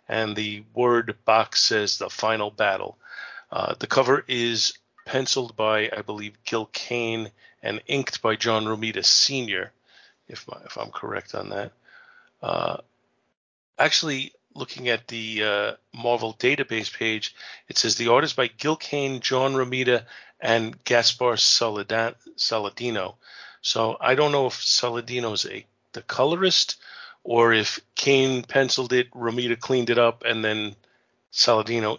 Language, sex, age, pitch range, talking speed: English, male, 40-59, 110-135 Hz, 135 wpm